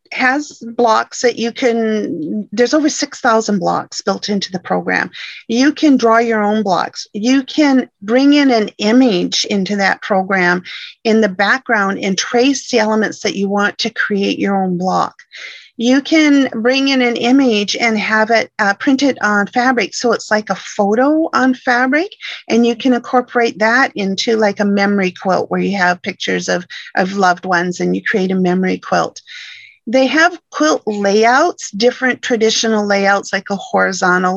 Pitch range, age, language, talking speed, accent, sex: 195-255 Hz, 40-59, English, 170 wpm, American, female